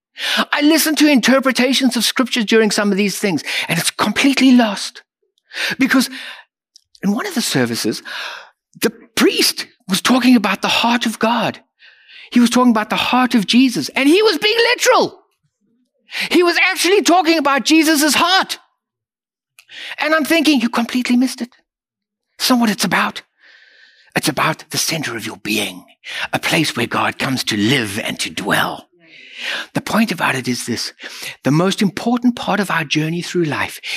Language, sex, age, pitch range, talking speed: English, male, 60-79, 195-280 Hz, 165 wpm